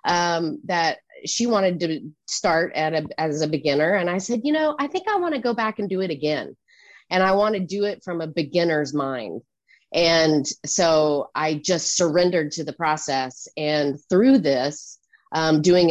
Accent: American